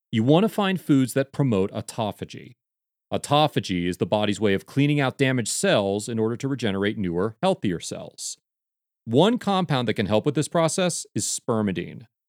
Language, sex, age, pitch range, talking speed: English, male, 40-59, 100-145 Hz, 170 wpm